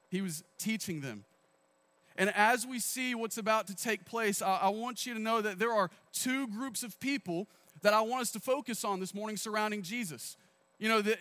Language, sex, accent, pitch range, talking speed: English, male, American, 175-245 Hz, 215 wpm